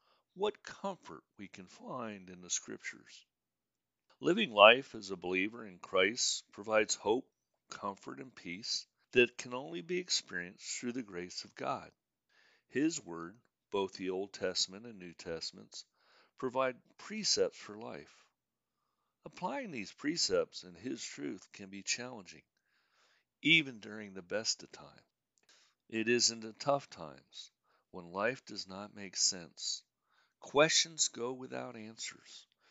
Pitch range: 95-145 Hz